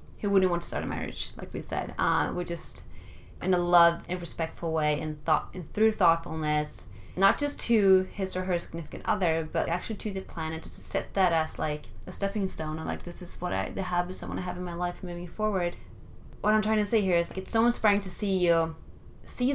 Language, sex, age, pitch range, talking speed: English, female, 20-39, 155-195 Hz, 230 wpm